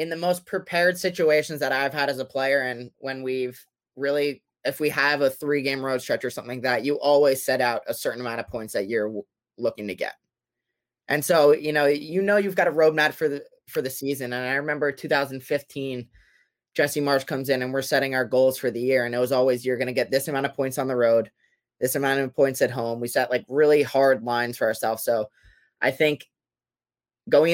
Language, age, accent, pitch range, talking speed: English, 20-39, American, 130-150 Hz, 230 wpm